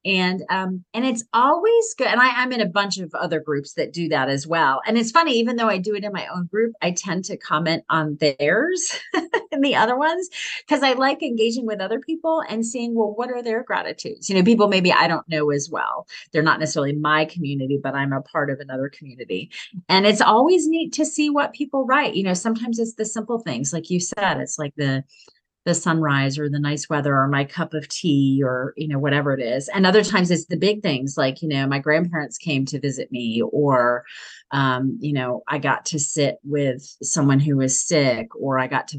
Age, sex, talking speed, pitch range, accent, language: 30-49, female, 230 wpm, 140-220 Hz, American, English